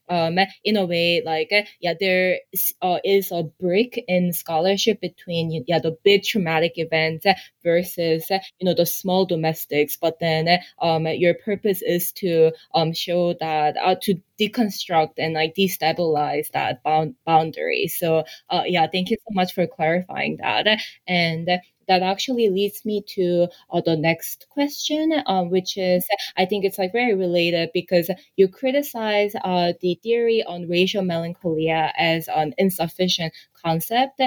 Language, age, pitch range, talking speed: English, 20-39, 165-195 Hz, 150 wpm